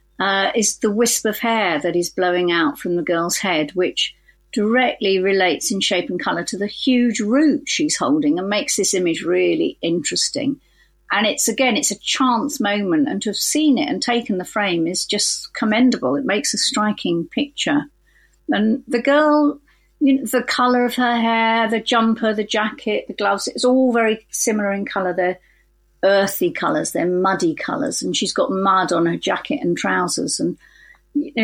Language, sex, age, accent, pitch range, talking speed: English, female, 50-69, British, 190-255 Hz, 180 wpm